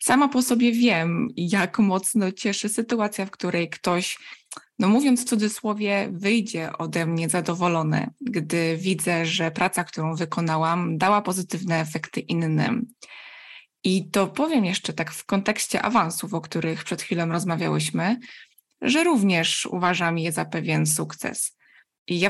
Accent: native